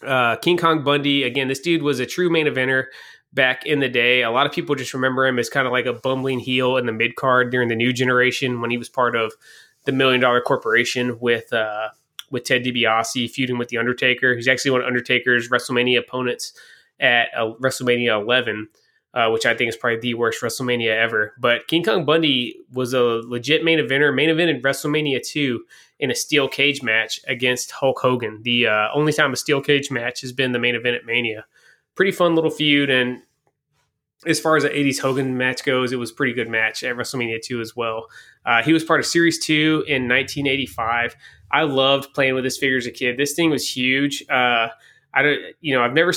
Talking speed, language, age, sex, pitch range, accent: 220 wpm, English, 20-39, male, 120-145 Hz, American